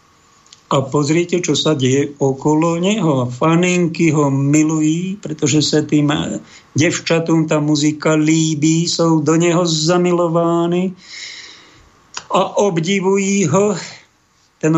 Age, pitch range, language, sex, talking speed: 50-69, 135-160 Hz, Slovak, male, 105 wpm